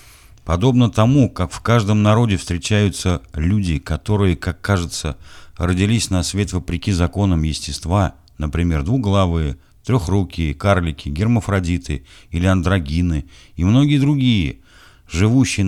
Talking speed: 105 wpm